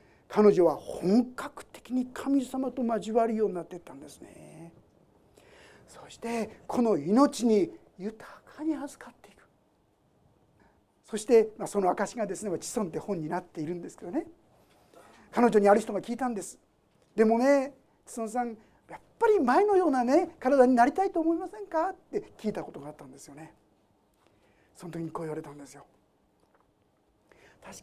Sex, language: male, Japanese